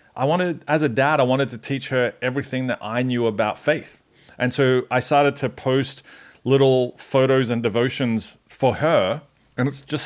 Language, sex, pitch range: English, male, 115-135 Hz